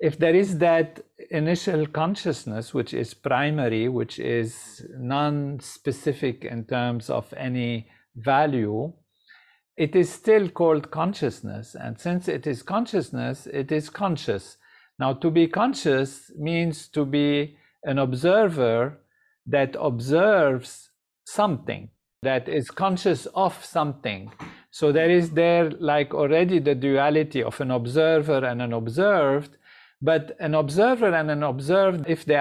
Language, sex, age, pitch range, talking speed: English, male, 50-69, 130-170 Hz, 130 wpm